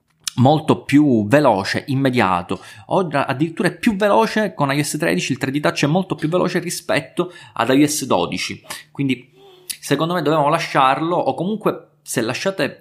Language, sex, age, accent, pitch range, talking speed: Italian, male, 30-49, native, 100-150 Hz, 150 wpm